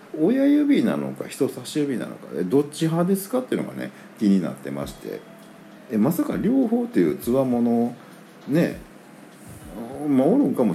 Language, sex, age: Japanese, male, 50-69